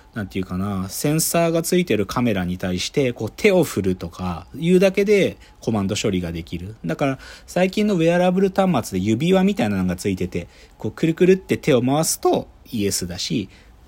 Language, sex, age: Japanese, male, 40-59